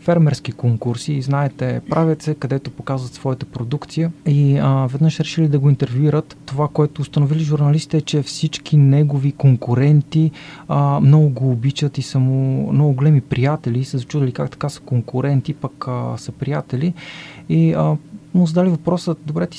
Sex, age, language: male, 20-39, Bulgarian